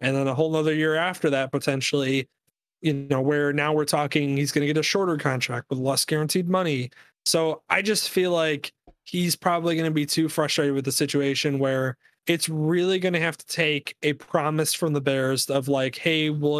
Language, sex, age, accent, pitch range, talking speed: English, male, 20-39, American, 140-165 Hz, 210 wpm